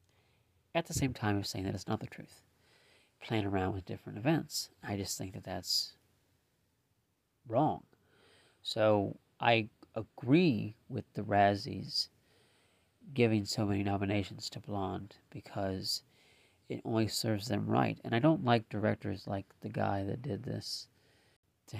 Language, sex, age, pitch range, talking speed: English, male, 40-59, 100-120 Hz, 145 wpm